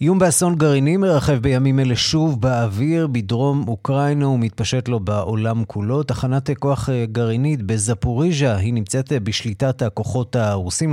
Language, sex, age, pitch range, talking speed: Hebrew, male, 30-49, 110-140 Hz, 125 wpm